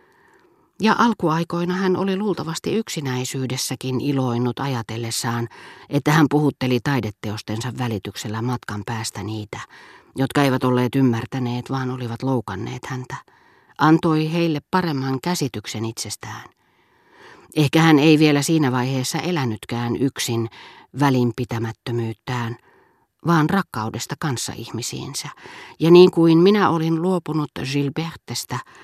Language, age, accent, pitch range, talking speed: Finnish, 40-59, native, 120-150 Hz, 100 wpm